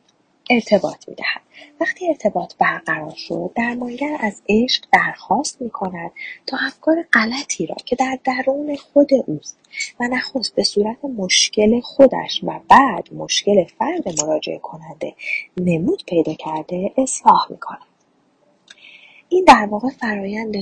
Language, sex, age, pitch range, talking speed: Persian, female, 30-49, 185-265 Hz, 120 wpm